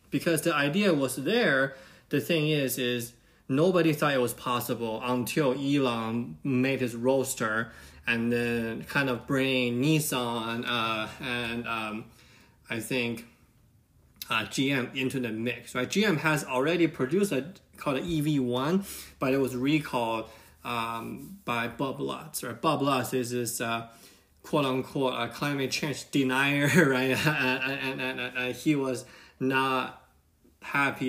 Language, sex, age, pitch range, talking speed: English, male, 20-39, 120-145 Hz, 145 wpm